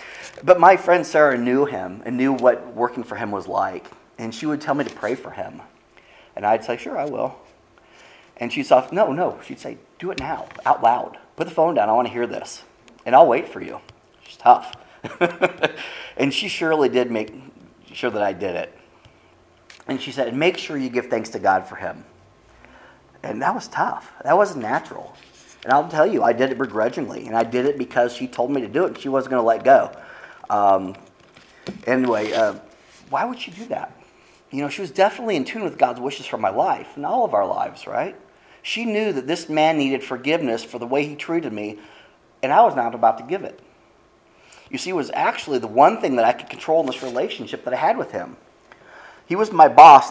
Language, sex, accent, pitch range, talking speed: English, male, American, 115-145 Hz, 220 wpm